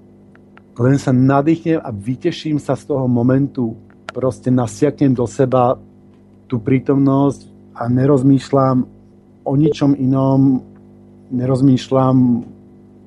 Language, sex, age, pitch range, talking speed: Slovak, male, 50-69, 115-140 Hz, 95 wpm